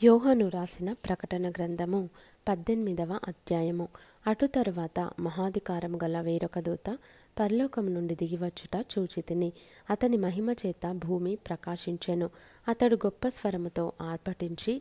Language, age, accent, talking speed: Telugu, 20-39, native, 95 wpm